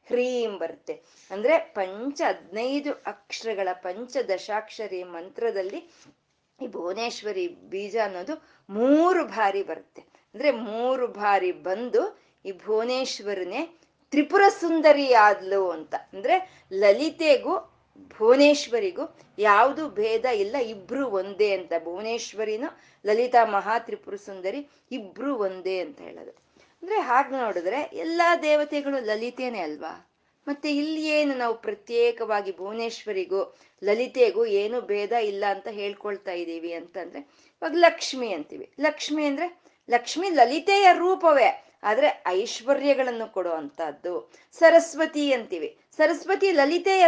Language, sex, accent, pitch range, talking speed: Kannada, female, native, 205-315 Hz, 100 wpm